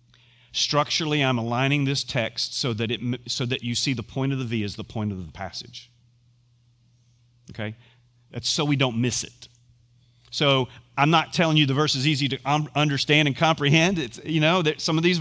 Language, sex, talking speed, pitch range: English, male, 200 wpm, 120-150 Hz